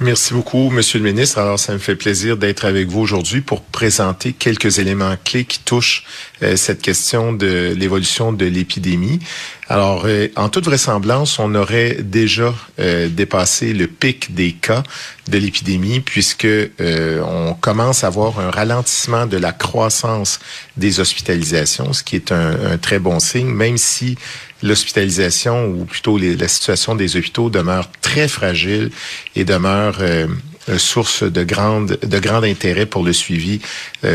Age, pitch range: 40-59, 90-115 Hz